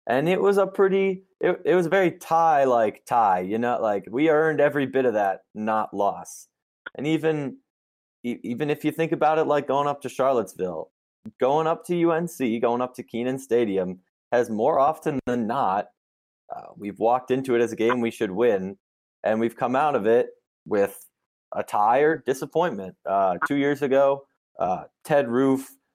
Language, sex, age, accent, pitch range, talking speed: English, male, 20-39, American, 100-145 Hz, 185 wpm